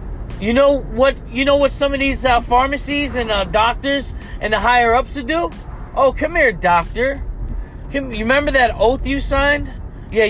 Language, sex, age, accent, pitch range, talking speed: English, male, 20-39, American, 210-270 Hz, 185 wpm